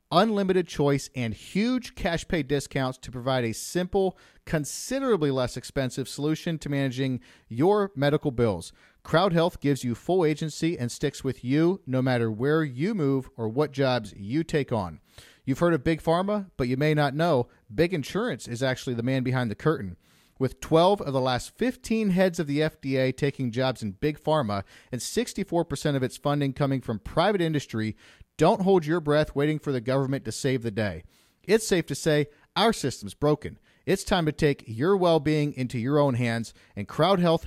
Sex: male